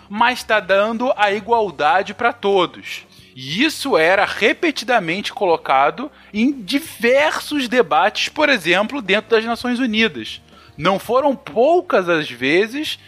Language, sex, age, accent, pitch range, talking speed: Portuguese, male, 20-39, Brazilian, 165-230 Hz, 120 wpm